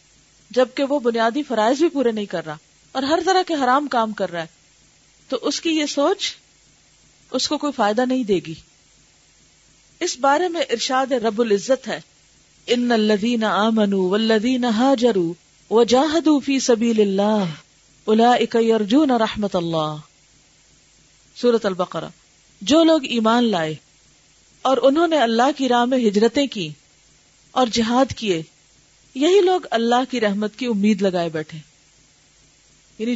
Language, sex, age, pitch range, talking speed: Urdu, female, 40-59, 205-275 Hz, 130 wpm